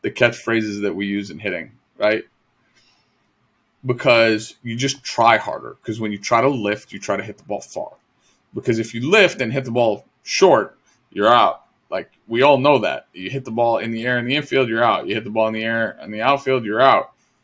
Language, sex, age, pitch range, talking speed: English, male, 20-39, 105-125 Hz, 225 wpm